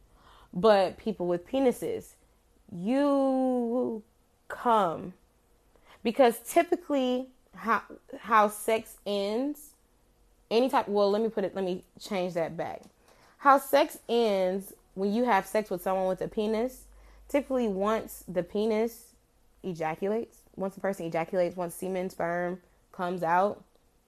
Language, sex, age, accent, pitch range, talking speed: English, female, 20-39, American, 180-230 Hz, 125 wpm